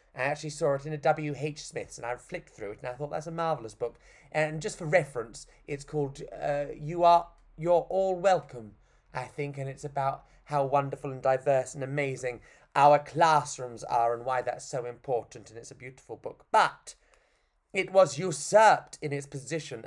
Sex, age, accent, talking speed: male, 30-49, British, 190 wpm